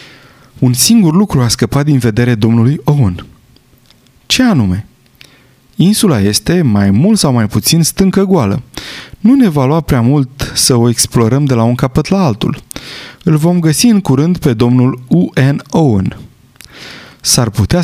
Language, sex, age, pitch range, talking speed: Romanian, male, 30-49, 115-150 Hz, 155 wpm